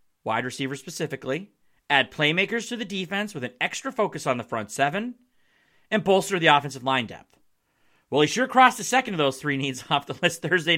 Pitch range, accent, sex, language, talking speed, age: 135-210 Hz, American, male, English, 200 wpm, 40-59